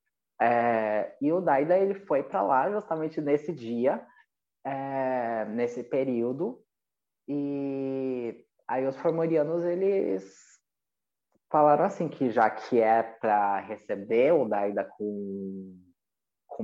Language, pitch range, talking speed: English, 105-135 Hz, 110 wpm